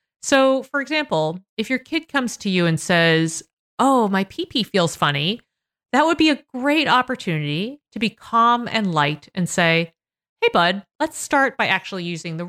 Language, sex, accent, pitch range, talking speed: English, female, American, 165-240 Hz, 180 wpm